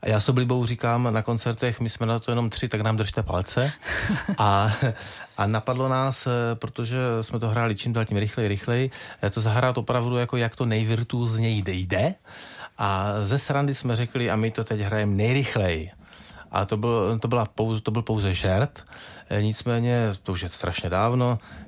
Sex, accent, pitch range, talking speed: male, native, 100-120 Hz, 175 wpm